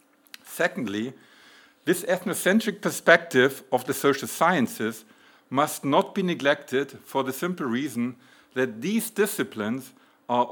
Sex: male